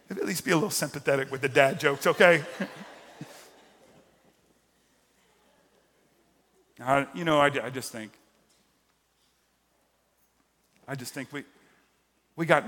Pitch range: 120-140 Hz